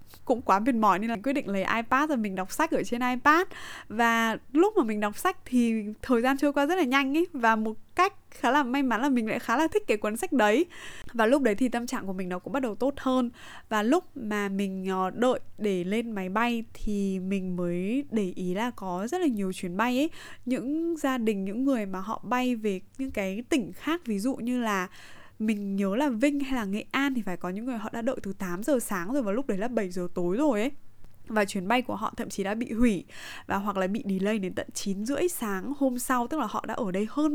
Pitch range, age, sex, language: 200-270 Hz, 20-39, female, Vietnamese